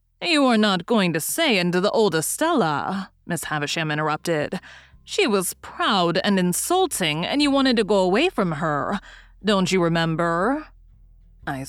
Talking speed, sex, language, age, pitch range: 155 wpm, female, English, 30-49, 155-215 Hz